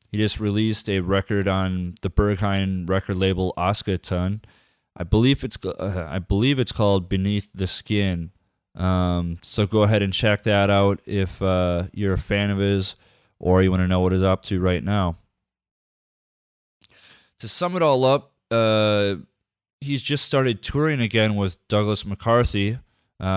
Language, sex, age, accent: English, male, 20-39, American